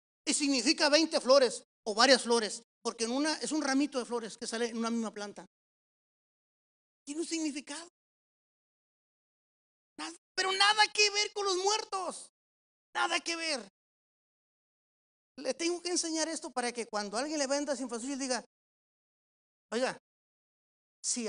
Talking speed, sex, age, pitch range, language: 145 wpm, male, 30-49, 230-305 Hz, Spanish